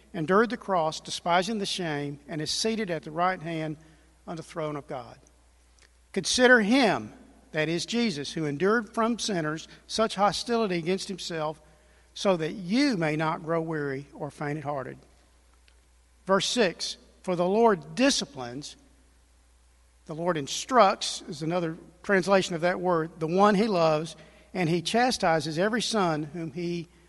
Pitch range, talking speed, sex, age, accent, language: 150-195 Hz, 145 wpm, male, 50-69, American, English